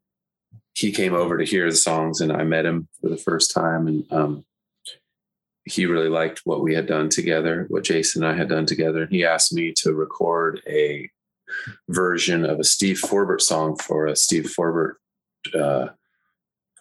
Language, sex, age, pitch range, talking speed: English, male, 30-49, 75-95 Hz, 180 wpm